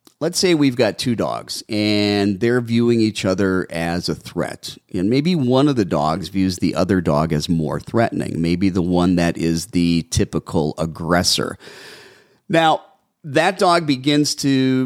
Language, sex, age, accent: English, male, 40-59, American